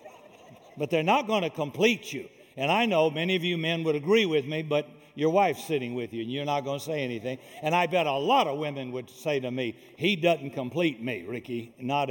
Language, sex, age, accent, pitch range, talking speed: English, male, 60-79, American, 140-185 Hz, 240 wpm